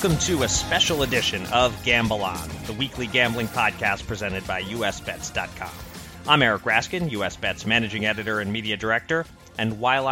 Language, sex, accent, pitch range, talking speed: English, male, American, 100-145 Hz, 155 wpm